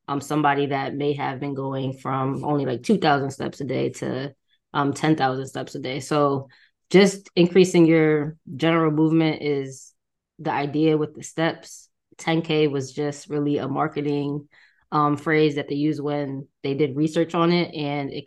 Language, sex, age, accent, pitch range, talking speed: English, female, 20-39, American, 140-160 Hz, 170 wpm